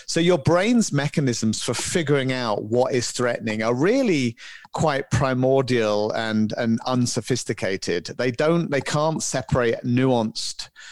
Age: 40-59